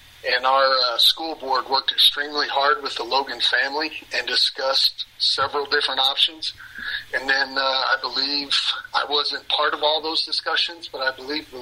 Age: 40-59